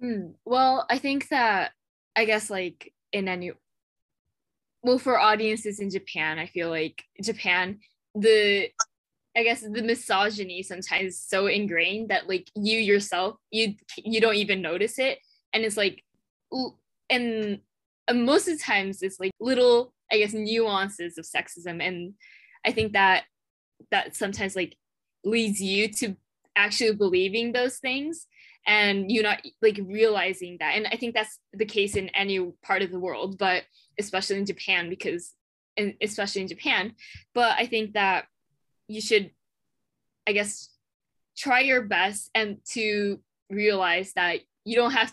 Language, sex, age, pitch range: Japanese, female, 10-29, 190-225 Hz